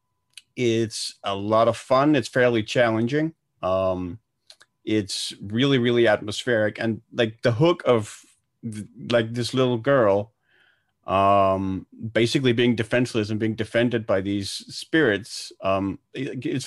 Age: 40-59